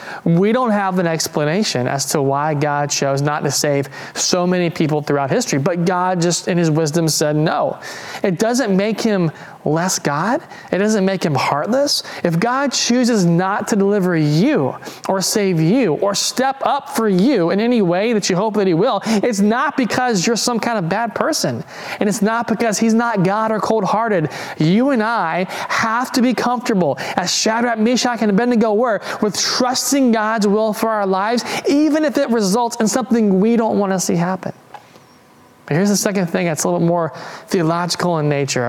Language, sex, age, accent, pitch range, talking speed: English, male, 30-49, American, 160-220 Hz, 190 wpm